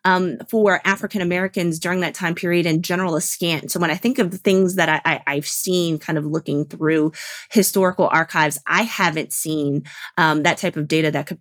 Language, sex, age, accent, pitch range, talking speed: English, female, 20-39, American, 155-185 Hz, 195 wpm